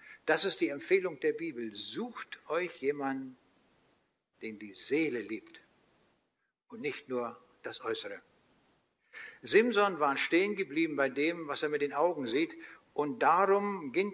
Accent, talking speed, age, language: German, 140 wpm, 60-79, German